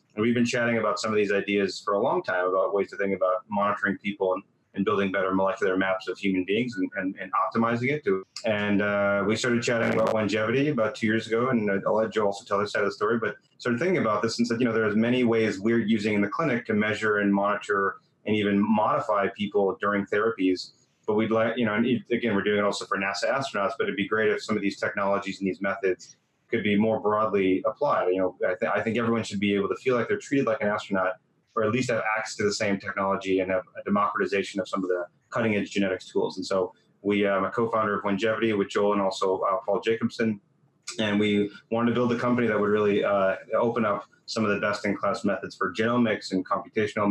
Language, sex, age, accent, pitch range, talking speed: English, male, 30-49, American, 100-115 Hz, 245 wpm